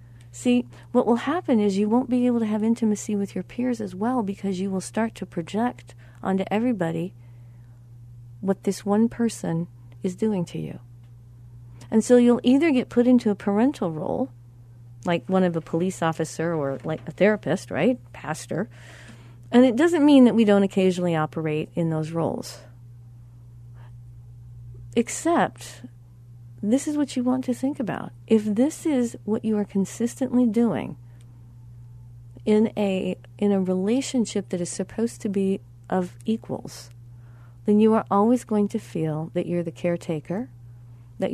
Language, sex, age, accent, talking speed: English, female, 40-59, American, 155 wpm